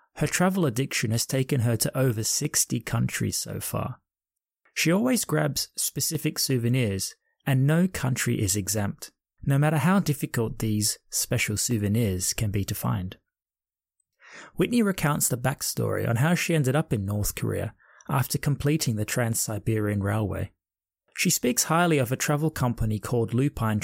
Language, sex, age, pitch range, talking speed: English, male, 20-39, 110-145 Hz, 150 wpm